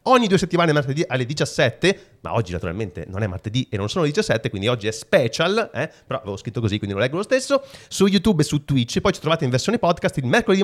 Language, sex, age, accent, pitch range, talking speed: Italian, male, 30-49, native, 125-175 Hz, 250 wpm